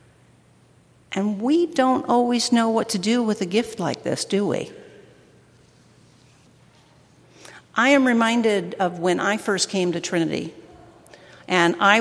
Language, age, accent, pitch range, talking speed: English, 50-69, American, 180-250 Hz, 135 wpm